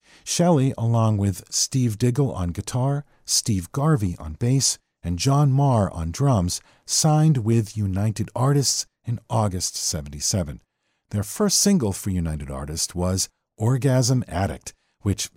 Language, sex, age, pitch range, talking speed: English, male, 50-69, 95-145 Hz, 130 wpm